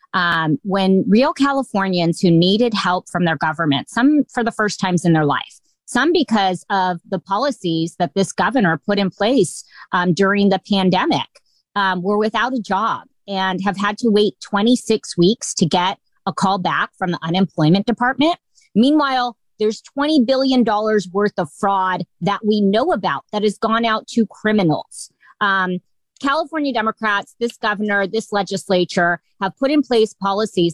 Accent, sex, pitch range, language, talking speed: American, female, 175-220 Hz, English, 165 wpm